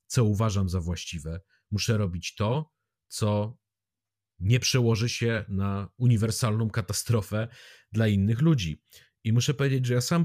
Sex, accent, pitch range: male, native, 95-125 Hz